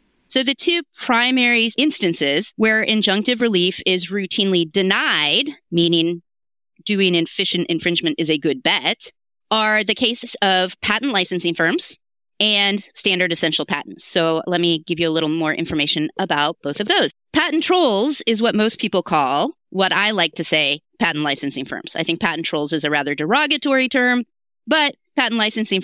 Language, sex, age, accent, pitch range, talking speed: English, female, 30-49, American, 160-225 Hz, 165 wpm